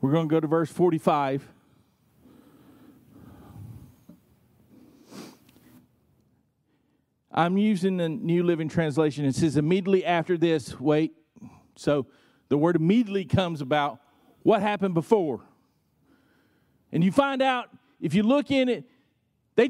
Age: 50-69